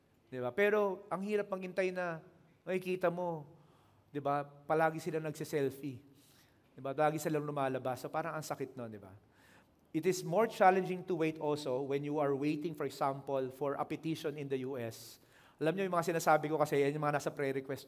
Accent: Filipino